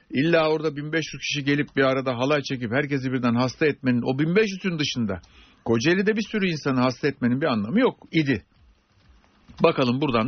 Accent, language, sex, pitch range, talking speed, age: native, Turkish, male, 130-160 Hz, 165 wpm, 60-79